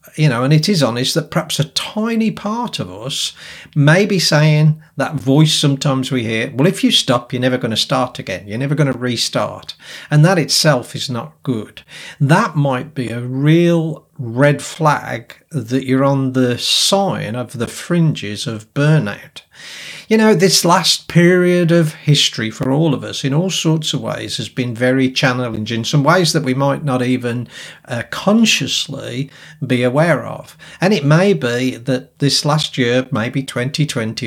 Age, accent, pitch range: 40-59, British, 125-160 Hz